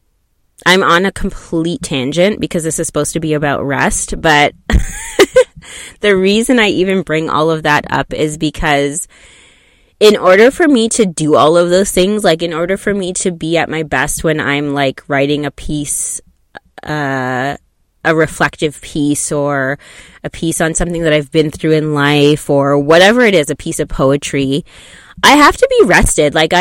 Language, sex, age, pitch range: English, female, 20-39, 145-180 Hz